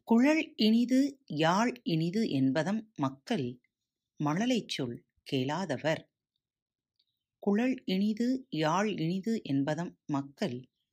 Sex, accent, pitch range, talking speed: female, native, 145-230 Hz, 80 wpm